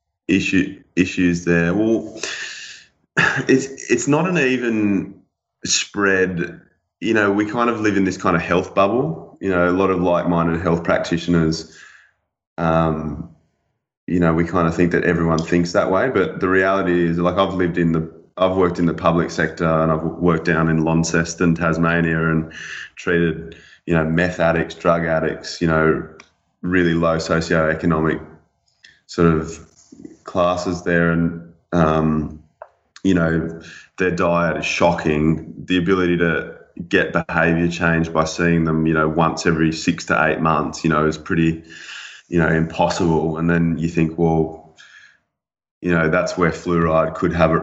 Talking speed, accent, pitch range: 155 wpm, Australian, 80-90 Hz